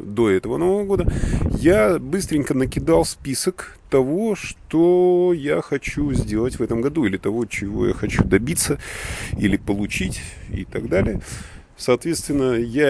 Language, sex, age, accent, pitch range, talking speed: Russian, male, 30-49, native, 105-150 Hz, 135 wpm